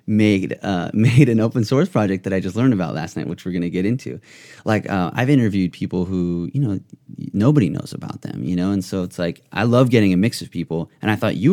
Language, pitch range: English, 95-135 Hz